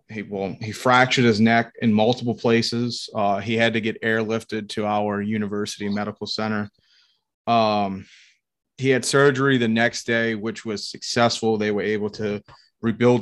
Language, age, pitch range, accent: English, 30-49, 105-115 Hz, American